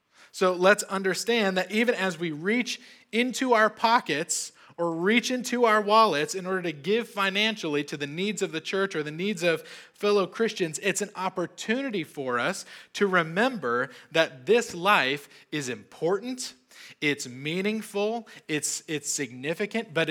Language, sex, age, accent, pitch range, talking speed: English, male, 20-39, American, 145-205 Hz, 150 wpm